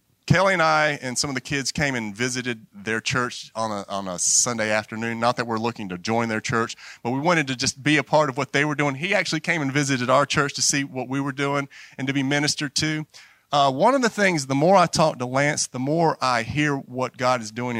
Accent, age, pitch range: American, 30-49, 115-150 Hz